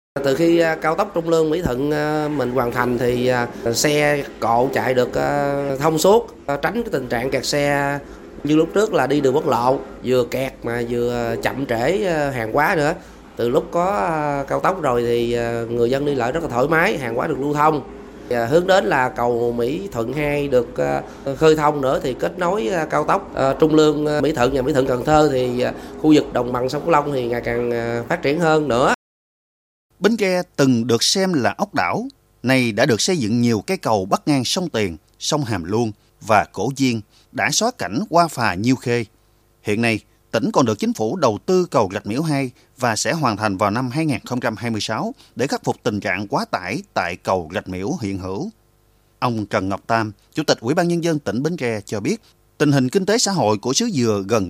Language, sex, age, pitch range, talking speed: Vietnamese, male, 20-39, 115-150 Hz, 210 wpm